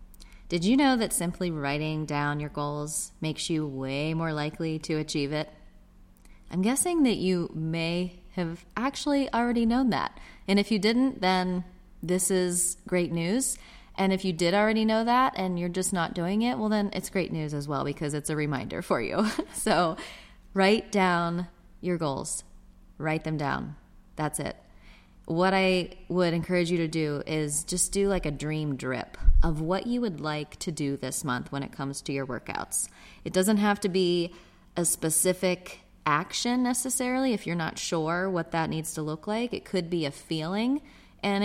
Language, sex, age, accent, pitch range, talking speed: English, female, 20-39, American, 150-195 Hz, 180 wpm